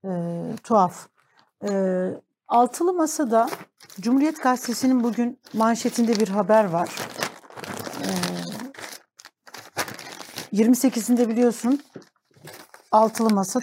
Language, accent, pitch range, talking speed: Turkish, native, 190-235 Hz, 80 wpm